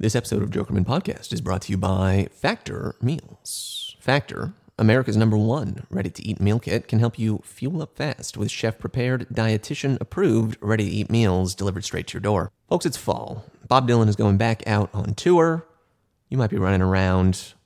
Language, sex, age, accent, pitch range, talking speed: English, male, 30-49, American, 100-130 Hz, 175 wpm